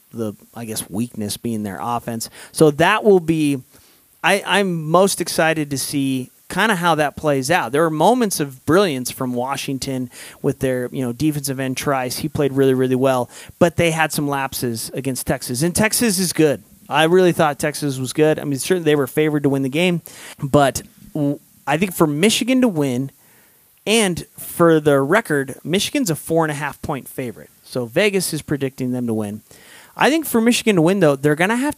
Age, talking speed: 30-49, 195 wpm